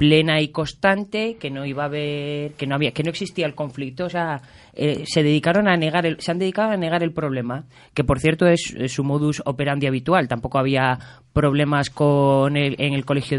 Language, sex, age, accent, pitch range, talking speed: Spanish, female, 20-39, Spanish, 130-160 Hz, 215 wpm